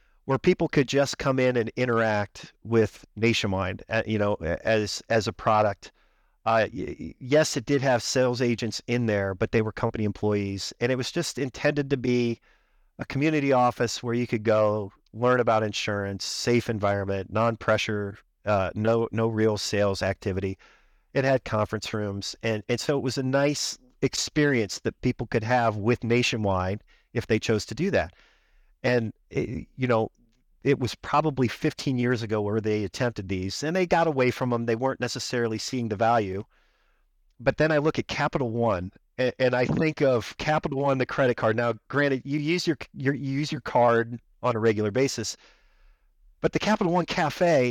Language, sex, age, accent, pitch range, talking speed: English, male, 40-59, American, 110-145 Hz, 180 wpm